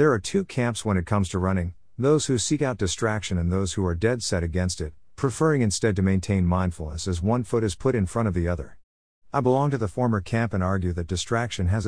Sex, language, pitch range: male, English, 90-115 Hz